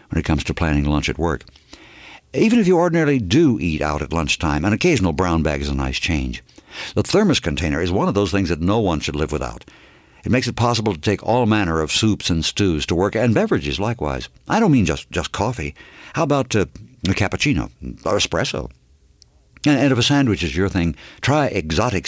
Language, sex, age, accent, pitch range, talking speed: English, male, 60-79, American, 75-120 Hz, 210 wpm